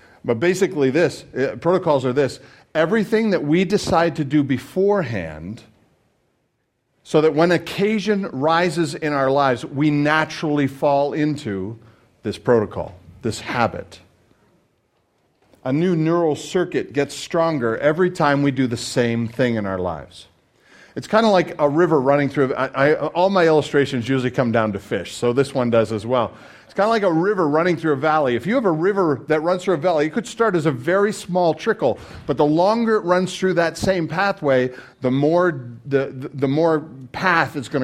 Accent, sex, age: American, male, 50-69